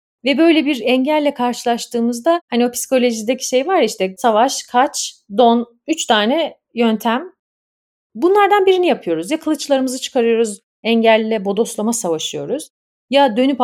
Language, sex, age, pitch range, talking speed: Turkish, female, 40-59, 210-290 Hz, 125 wpm